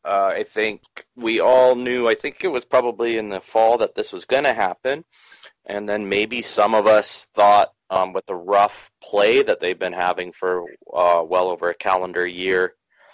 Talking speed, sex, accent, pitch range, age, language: 195 wpm, male, American, 95-145 Hz, 30-49, English